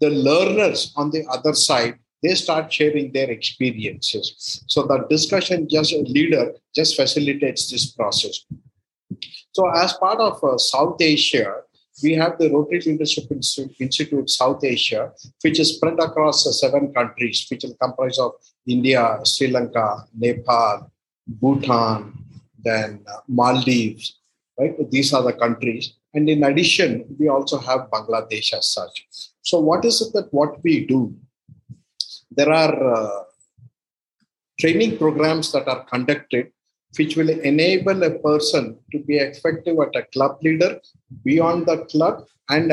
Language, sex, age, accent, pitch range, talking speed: English, male, 50-69, Indian, 130-160 Hz, 140 wpm